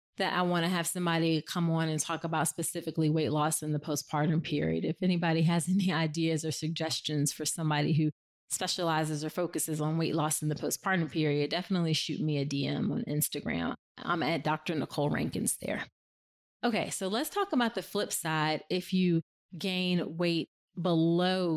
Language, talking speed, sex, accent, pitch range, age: English, 180 wpm, female, American, 155-185 Hz, 30-49